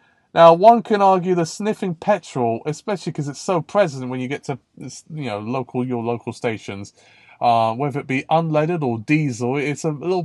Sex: male